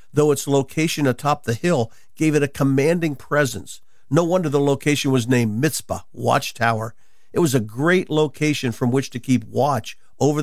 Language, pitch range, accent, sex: English, 125-160 Hz, American, male